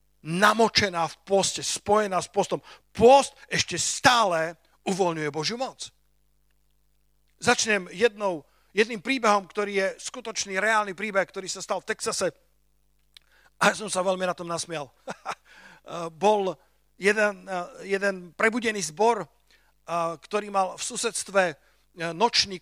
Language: Slovak